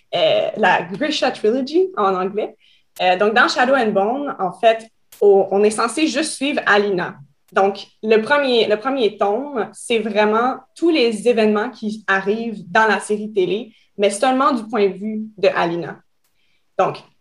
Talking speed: 165 wpm